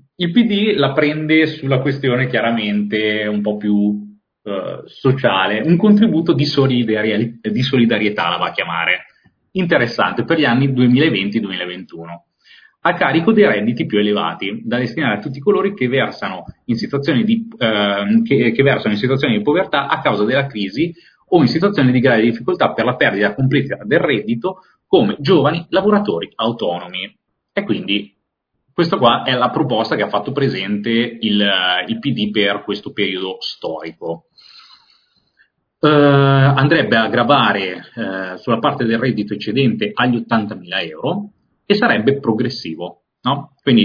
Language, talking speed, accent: Italian, 145 wpm, native